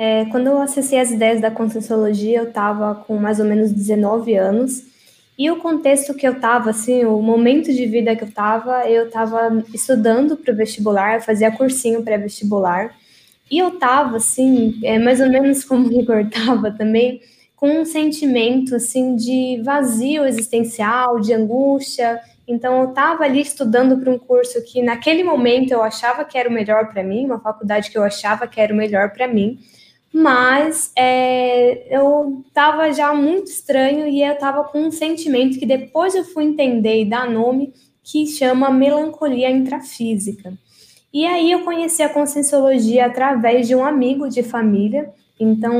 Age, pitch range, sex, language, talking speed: 10-29, 225-275 Hz, female, Portuguese, 170 wpm